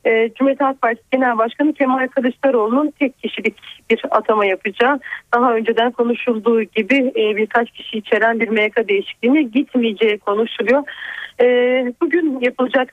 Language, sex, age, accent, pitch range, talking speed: Turkish, female, 40-59, native, 235-280 Hz, 120 wpm